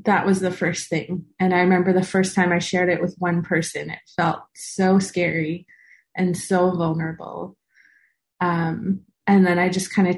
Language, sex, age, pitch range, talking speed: English, female, 30-49, 175-195 Hz, 185 wpm